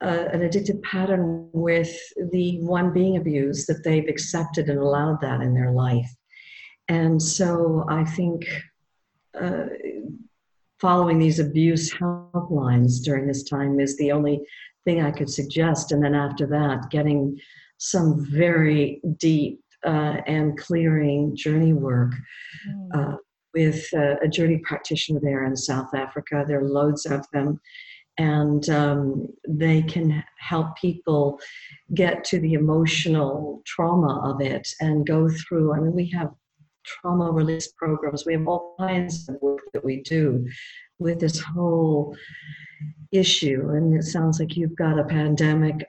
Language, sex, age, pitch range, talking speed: English, female, 50-69, 145-165 Hz, 145 wpm